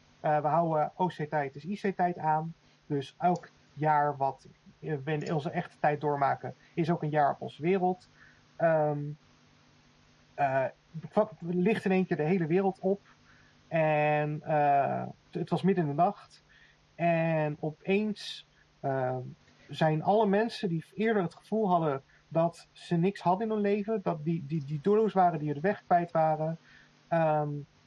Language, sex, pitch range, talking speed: Dutch, male, 145-180 Hz, 160 wpm